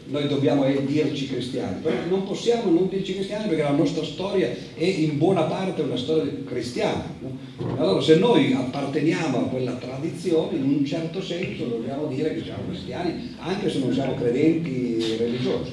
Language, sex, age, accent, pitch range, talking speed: Italian, male, 50-69, native, 120-160 Hz, 170 wpm